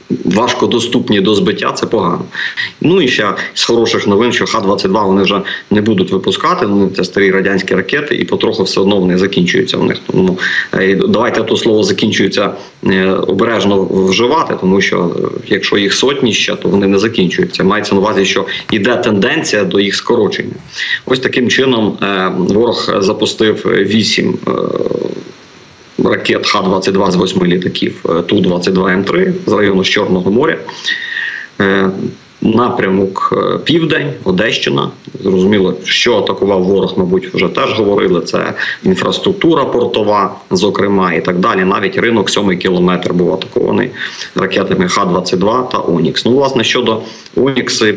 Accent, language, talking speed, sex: native, Ukrainian, 135 wpm, male